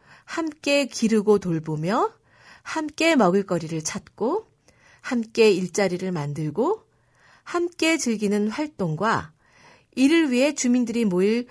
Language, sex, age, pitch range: Korean, female, 40-59, 175-275 Hz